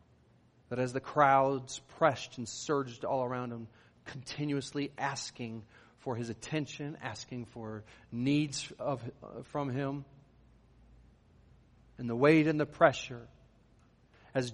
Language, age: English, 40-59